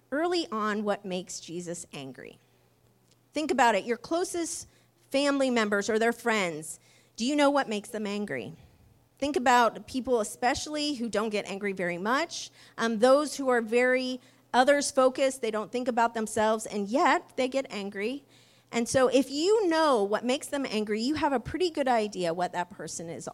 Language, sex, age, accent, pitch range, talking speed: English, female, 30-49, American, 195-260 Hz, 175 wpm